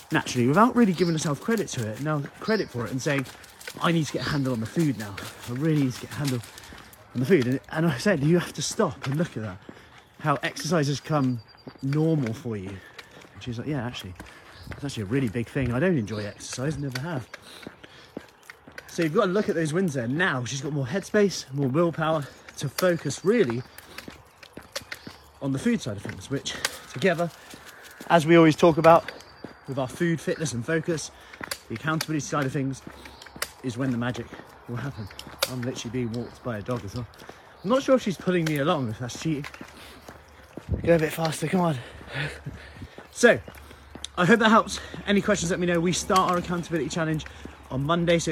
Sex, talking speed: male, 205 wpm